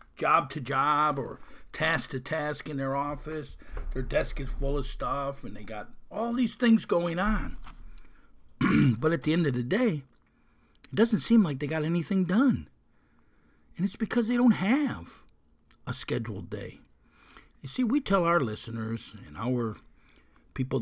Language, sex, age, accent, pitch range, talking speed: English, male, 50-69, American, 115-185 Hz, 155 wpm